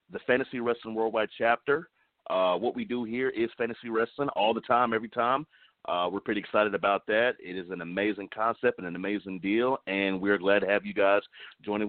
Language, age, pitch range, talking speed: English, 40-59, 95-115 Hz, 205 wpm